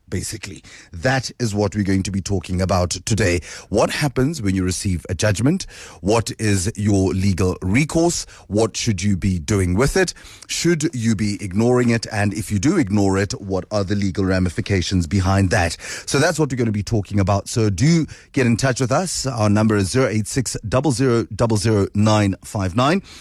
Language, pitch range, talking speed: English, 100-125 Hz, 180 wpm